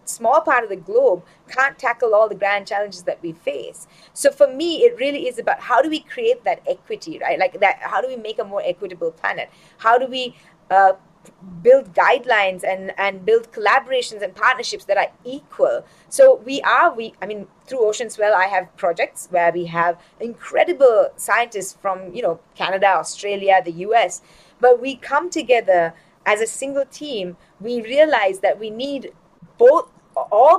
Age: 30-49